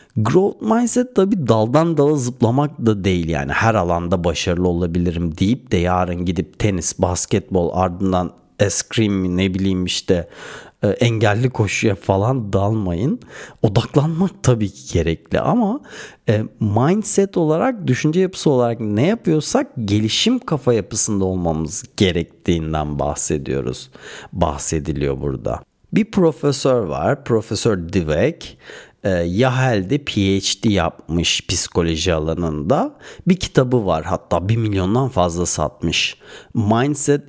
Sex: male